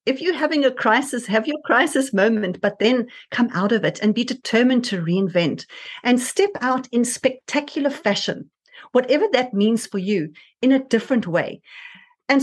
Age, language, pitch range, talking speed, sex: 40-59, English, 195-255 Hz, 175 wpm, female